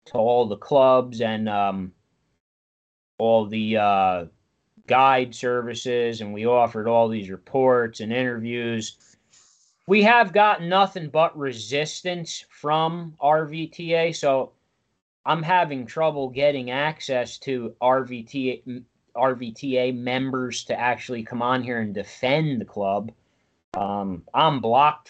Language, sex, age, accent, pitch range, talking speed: English, male, 30-49, American, 110-155 Hz, 115 wpm